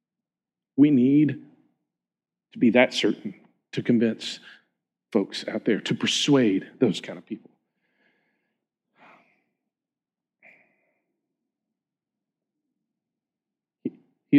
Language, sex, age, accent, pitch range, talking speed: English, male, 40-59, American, 155-235 Hz, 75 wpm